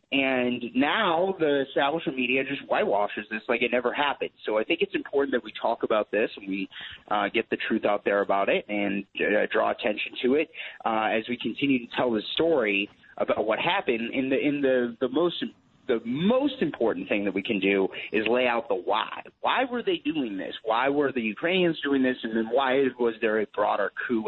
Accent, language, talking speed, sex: American, English, 215 wpm, male